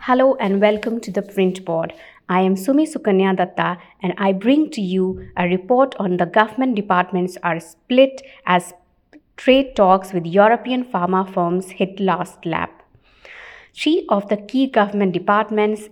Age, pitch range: 50-69, 190-230 Hz